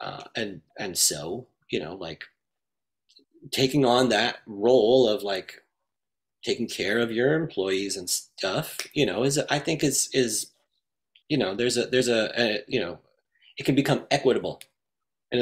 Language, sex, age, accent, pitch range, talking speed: English, male, 30-49, American, 110-140 Hz, 160 wpm